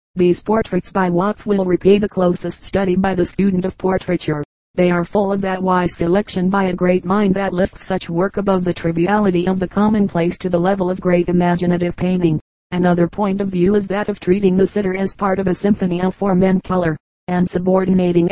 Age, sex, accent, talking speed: 40-59, female, American, 205 wpm